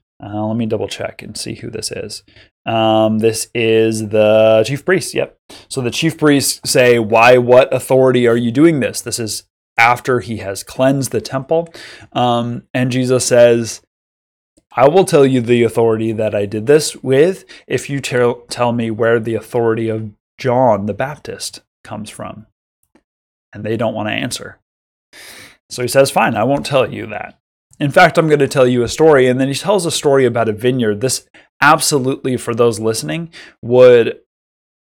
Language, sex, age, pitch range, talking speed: English, male, 20-39, 110-135 Hz, 180 wpm